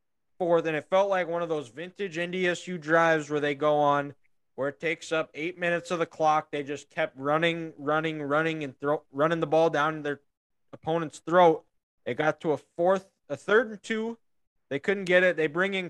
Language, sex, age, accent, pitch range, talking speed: English, male, 20-39, American, 155-195 Hz, 205 wpm